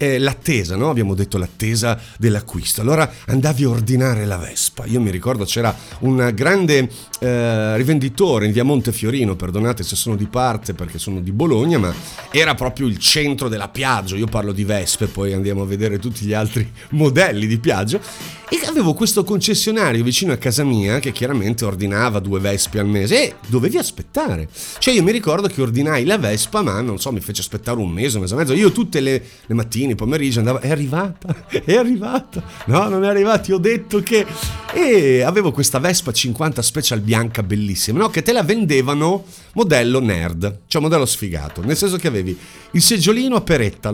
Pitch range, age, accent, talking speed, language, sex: 110-175 Hz, 40-59, native, 185 wpm, Italian, male